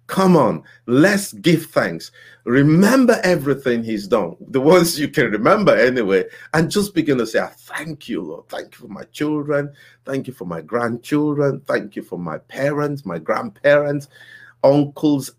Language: English